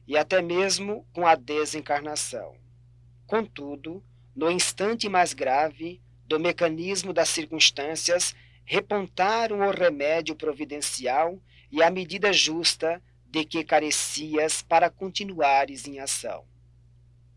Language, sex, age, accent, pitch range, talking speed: Portuguese, male, 40-59, Brazilian, 140-180 Hz, 105 wpm